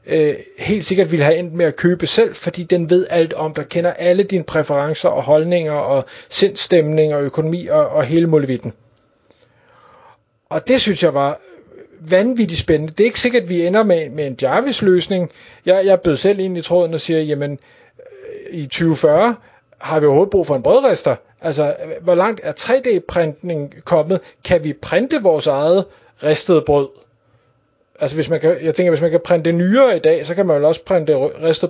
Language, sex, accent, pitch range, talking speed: Danish, male, native, 155-190 Hz, 185 wpm